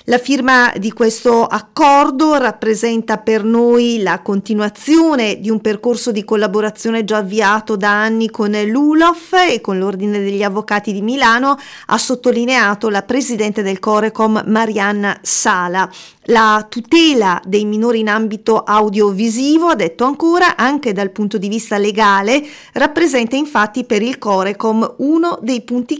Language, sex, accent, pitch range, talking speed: Italian, female, native, 215-260 Hz, 140 wpm